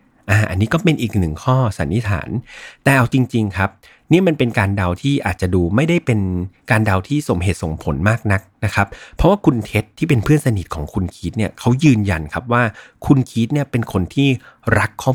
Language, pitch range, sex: Thai, 95-130 Hz, male